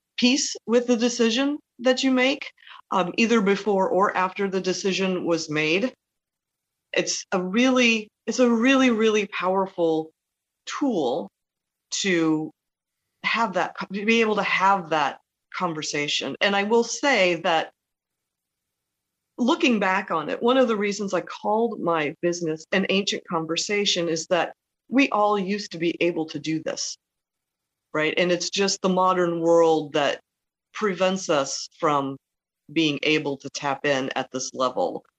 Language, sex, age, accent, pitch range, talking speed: English, female, 40-59, American, 160-210 Hz, 145 wpm